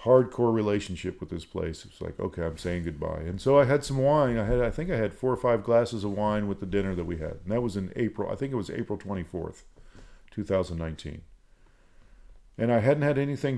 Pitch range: 95-120 Hz